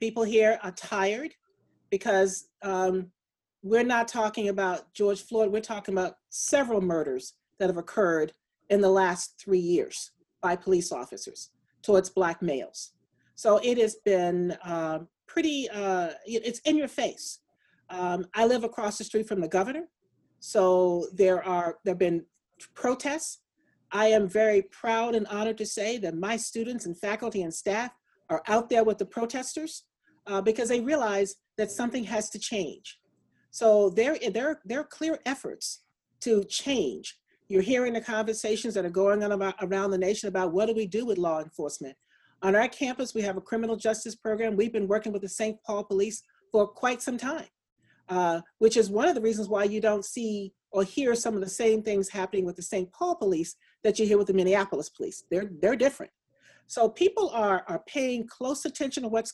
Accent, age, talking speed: American, 40-59, 180 wpm